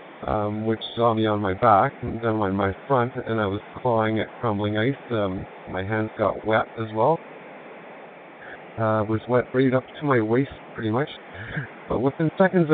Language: English